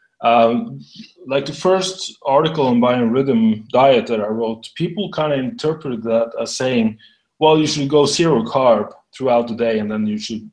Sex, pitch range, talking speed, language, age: male, 115-145 Hz, 175 wpm, English, 30-49